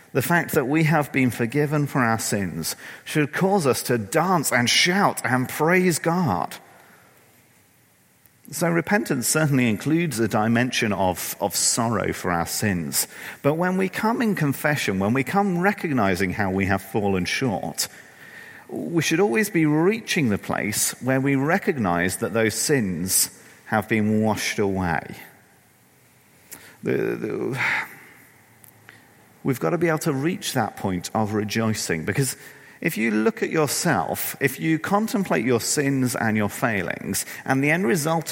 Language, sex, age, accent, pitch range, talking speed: English, male, 40-59, British, 110-160 Hz, 150 wpm